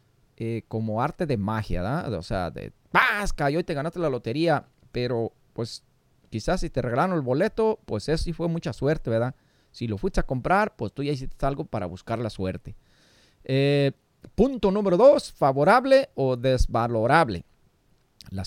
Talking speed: 170 wpm